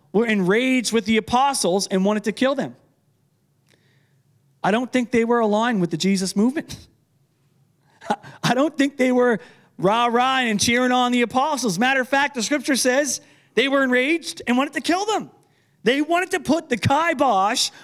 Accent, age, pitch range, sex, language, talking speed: American, 30-49, 190-280 Hz, male, English, 175 wpm